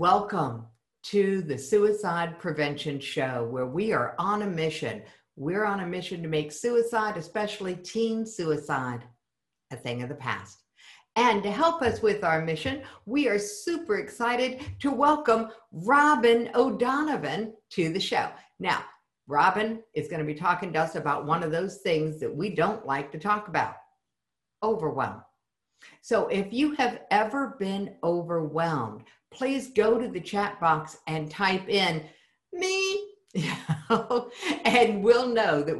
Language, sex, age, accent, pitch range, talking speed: English, female, 60-79, American, 150-225 Hz, 150 wpm